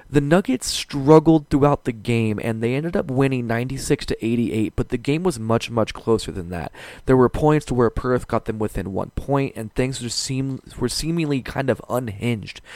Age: 20-39